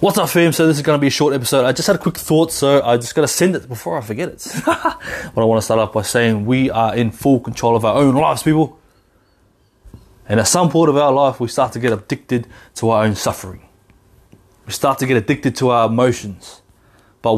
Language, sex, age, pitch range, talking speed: English, male, 20-39, 110-135 Hz, 250 wpm